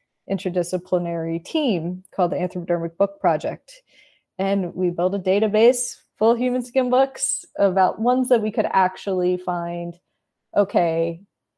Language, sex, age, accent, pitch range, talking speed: English, female, 20-39, American, 170-210 Hz, 130 wpm